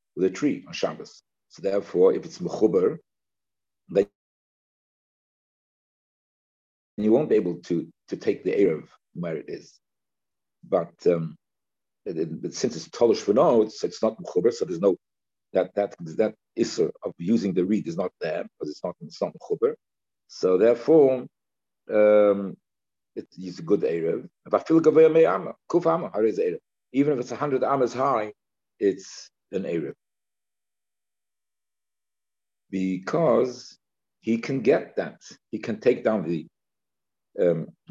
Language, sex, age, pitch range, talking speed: English, male, 50-69, 90-140 Hz, 135 wpm